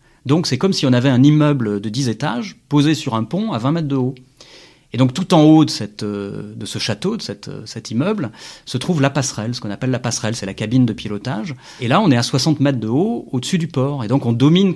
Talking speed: 260 wpm